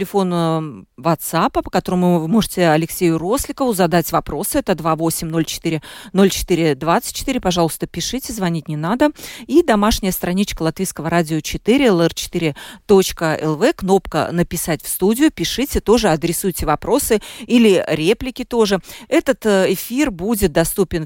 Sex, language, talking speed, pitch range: female, Russian, 110 wpm, 165-225 Hz